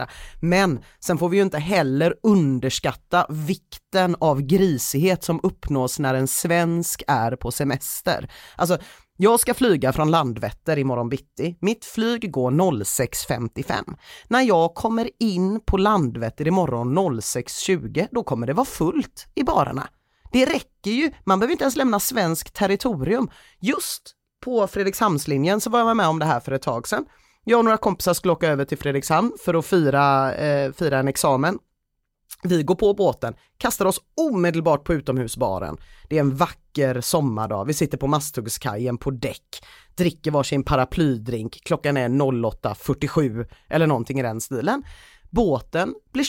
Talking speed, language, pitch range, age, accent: 155 wpm, Swedish, 135-200 Hz, 30-49, native